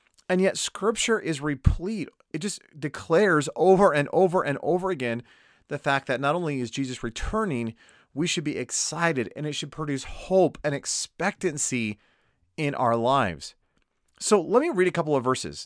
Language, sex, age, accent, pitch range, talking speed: English, male, 30-49, American, 125-180 Hz, 170 wpm